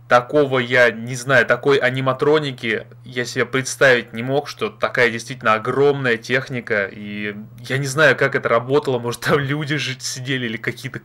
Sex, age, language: male, 20-39, Russian